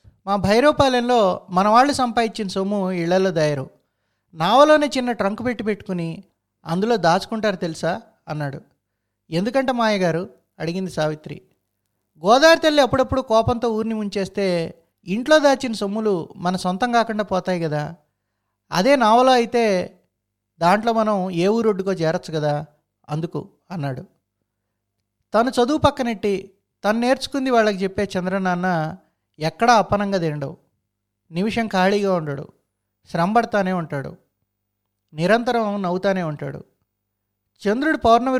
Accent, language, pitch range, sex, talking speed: native, Telugu, 155-220 Hz, male, 105 wpm